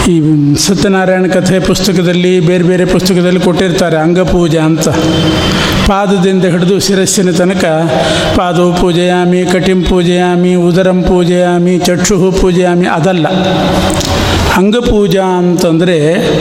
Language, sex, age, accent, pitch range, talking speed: Kannada, male, 50-69, native, 175-195 Hz, 90 wpm